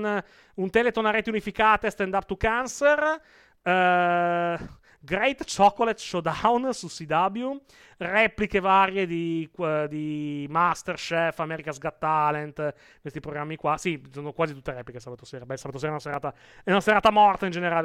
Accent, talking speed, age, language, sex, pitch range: native, 150 wpm, 30-49, Italian, male, 150-215 Hz